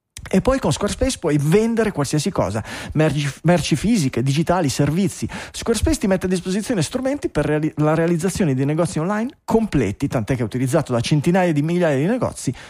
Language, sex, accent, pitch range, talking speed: Italian, male, native, 140-210 Hz, 170 wpm